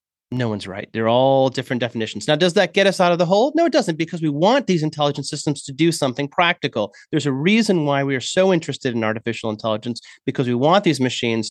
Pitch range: 125-165 Hz